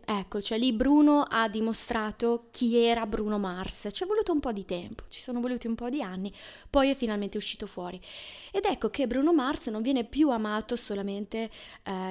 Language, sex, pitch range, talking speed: Italian, female, 205-260 Hz, 200 wpm